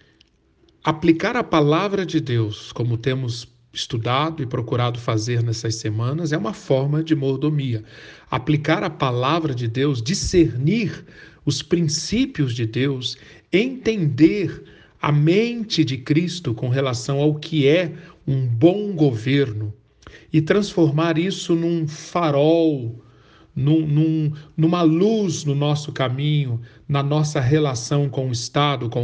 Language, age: Portuguese, 40-59